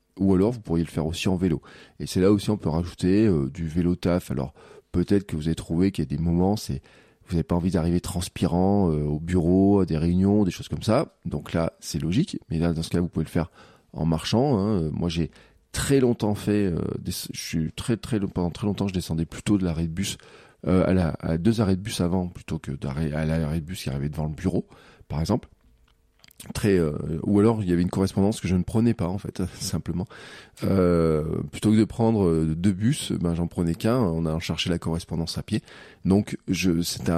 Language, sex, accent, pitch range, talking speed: French, male, French, 80-105 Hz, 235 wpm